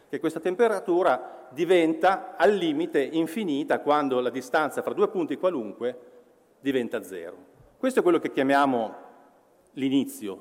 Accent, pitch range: native, 130-185 Hz